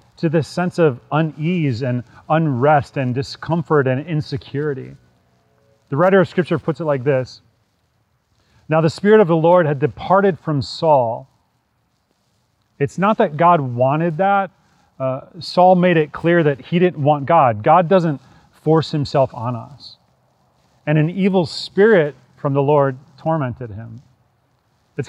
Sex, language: male, English